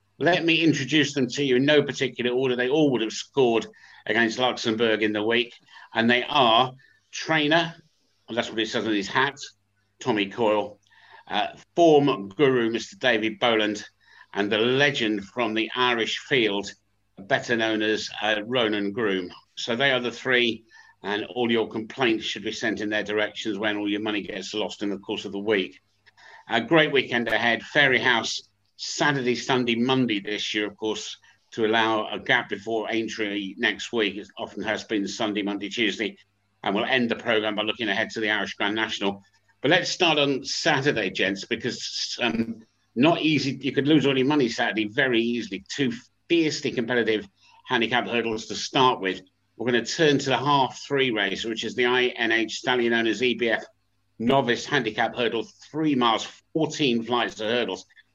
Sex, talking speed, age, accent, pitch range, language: male, 180 wpm, 50-69, British, 105-130 Hz, English